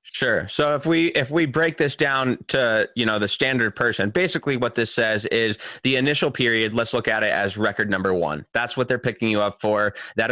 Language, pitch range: English, 105-130 Hz